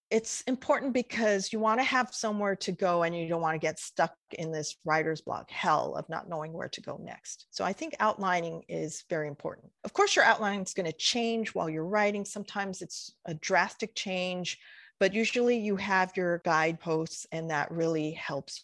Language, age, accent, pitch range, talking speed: English, 40-59, American, 160-205 Hz, 190 wpm